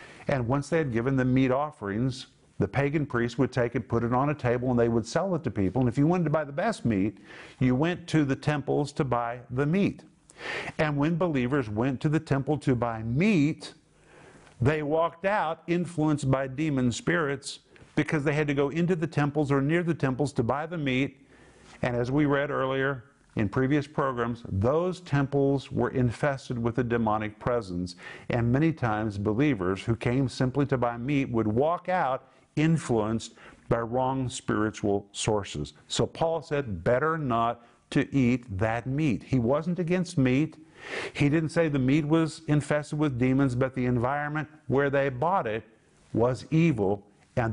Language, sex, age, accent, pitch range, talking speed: English, male, 50-69, American, 120-150 Hz, 180 wpm